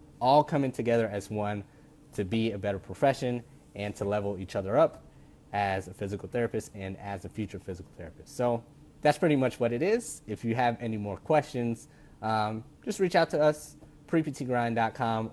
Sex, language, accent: male, English, American